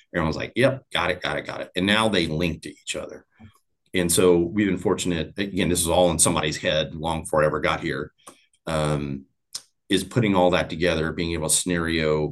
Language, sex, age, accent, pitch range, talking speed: English, male, 40-59, American, 80-105 Hz, 215 wpm